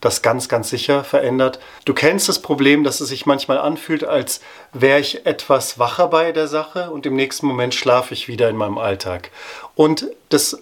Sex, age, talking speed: male, 30-49, 190 wpm